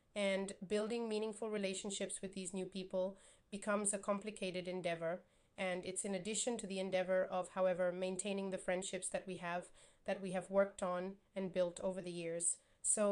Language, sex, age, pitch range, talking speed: Italian, female, 30-49, 180-195 Hz, 175 wpm